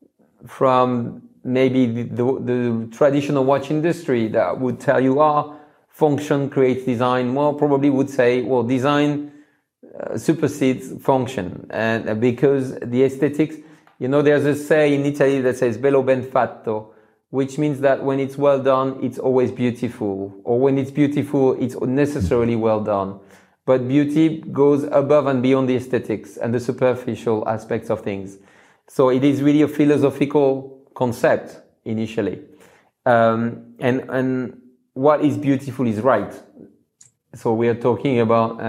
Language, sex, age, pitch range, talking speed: English, male, 40-59, 120-145 Hz, 145 wpm